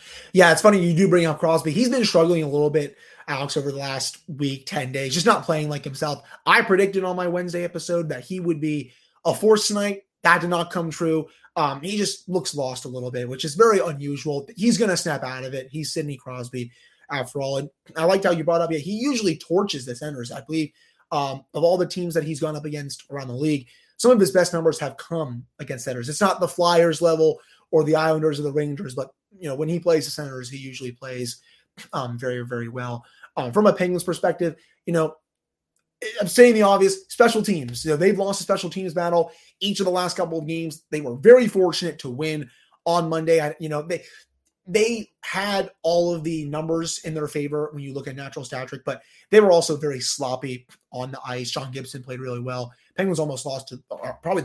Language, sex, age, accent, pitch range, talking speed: English, male, 30-49, American, 140-180 Hz, 230 wpm